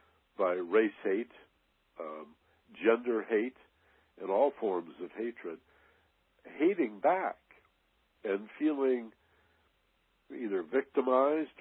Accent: American